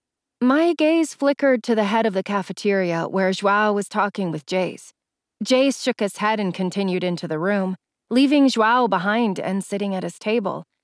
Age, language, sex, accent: 30-49, English, female, American